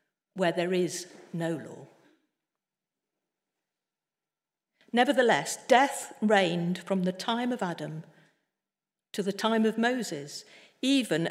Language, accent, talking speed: English, British, 100 wpm